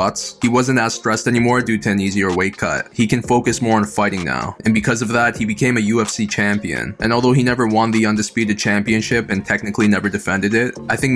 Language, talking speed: English, 225 wpm